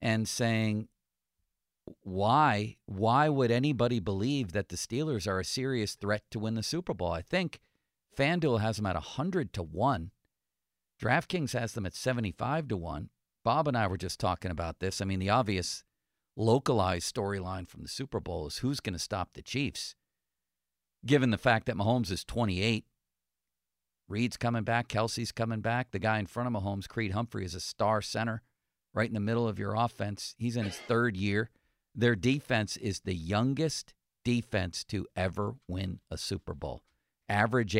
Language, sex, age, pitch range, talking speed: English, male, 50-69, 95-120 Hz, 175 wpm